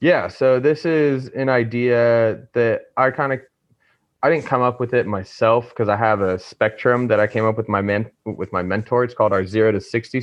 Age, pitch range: 20-39, 100-120 Hz